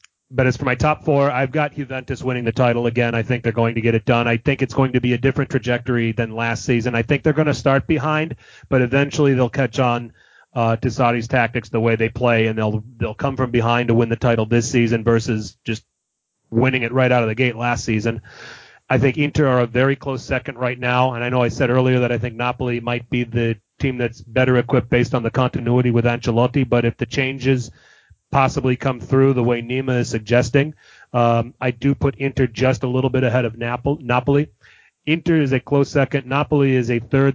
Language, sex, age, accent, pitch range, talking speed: English, male, 30-49, American, 120-135 Hz, 230 wpm